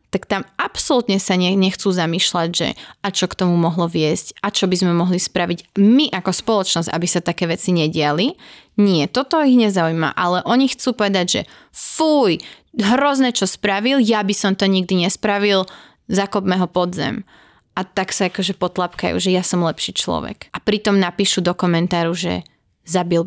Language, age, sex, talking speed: Slovak, 20-39, female, 170 wpm